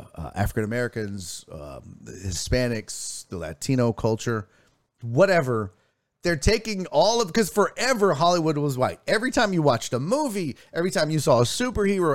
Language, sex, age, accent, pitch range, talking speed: English, male, 30-49, American, 130-200 Hz, 140 wpm